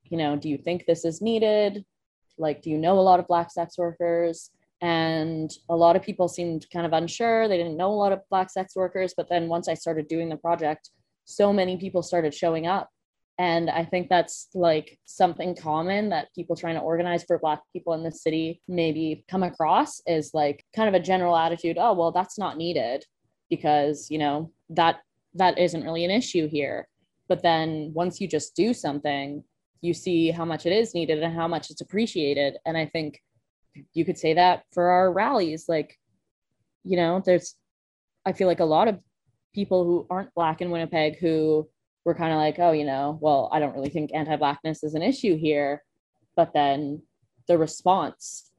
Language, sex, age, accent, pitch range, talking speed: English, female, 20-39, American, 155-180 Hz, 200 wpm